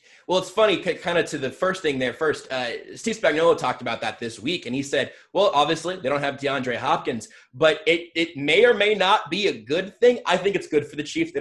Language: English